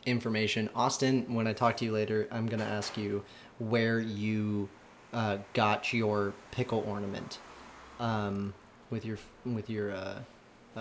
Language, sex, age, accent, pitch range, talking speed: English, male, 20-39, American, 110-125 Hz, 140 wpm